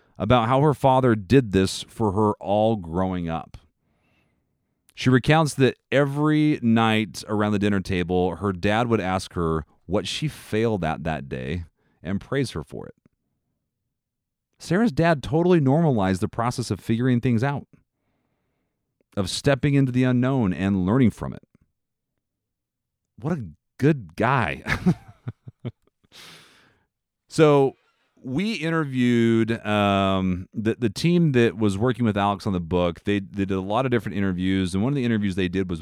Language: English